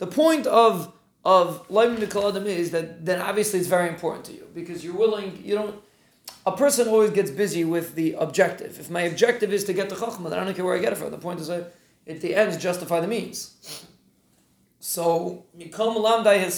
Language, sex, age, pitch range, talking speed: English, male, 30-49, 160-205 Hz, 190 wpm